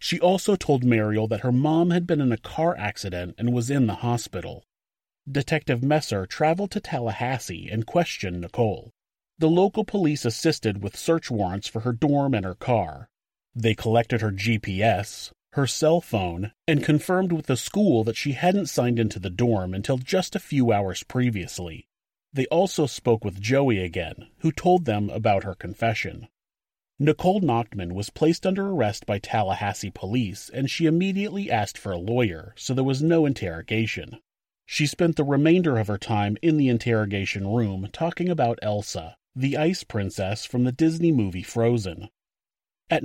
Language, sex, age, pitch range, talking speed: English, male, 30-49, 105-155 Hz, 165 wpm